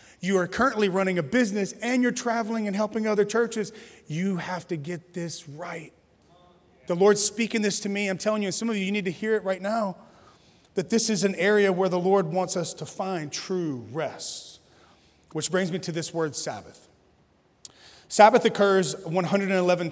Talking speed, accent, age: 190 wpm, American, 30-49